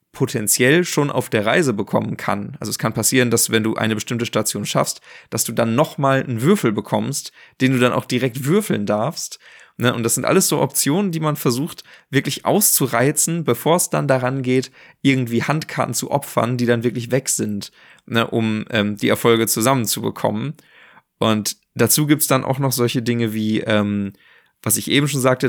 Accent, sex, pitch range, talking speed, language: German, male, 115-150 Hz, 180 wpm, German